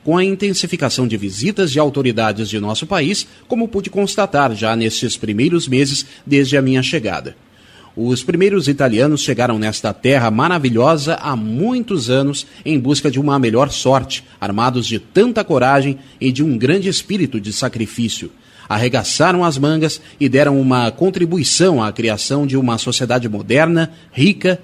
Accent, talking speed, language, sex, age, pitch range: Brazilian, 150 wpm, Portuguese, male, 30-49, 115-165 Hz